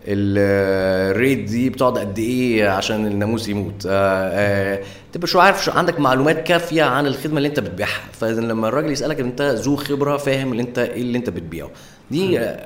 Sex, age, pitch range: male, 20-39, 100-130 Hz